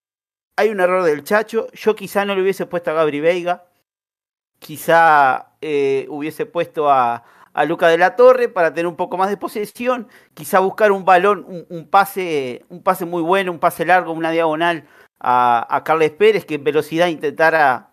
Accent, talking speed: Argentinian, 185 wpm